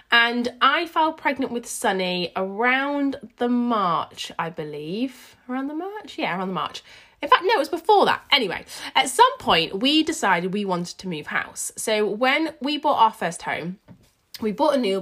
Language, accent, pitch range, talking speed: English, British, 185-270 Hz, 190 wpm